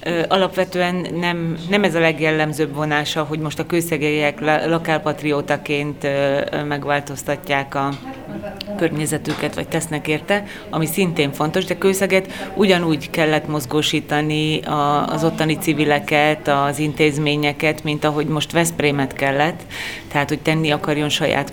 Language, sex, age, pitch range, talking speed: Hungarian, female, 30-49, 150-175 Hz, 115 wpm